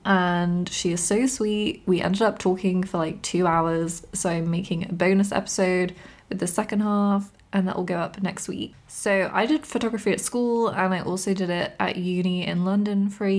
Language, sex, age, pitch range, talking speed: English, female, 20-39, 180-205 Hz, 210 wpm